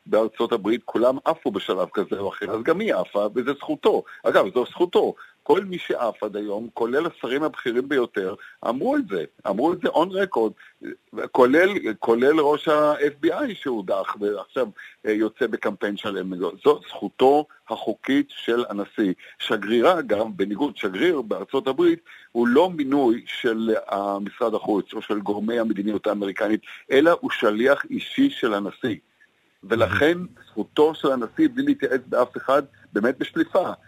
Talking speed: 140 wpm